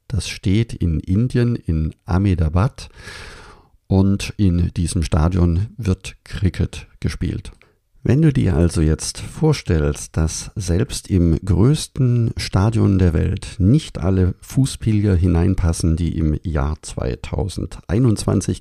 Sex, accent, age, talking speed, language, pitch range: male, German, 50-69, 110 wpm, German, 85-110 Hz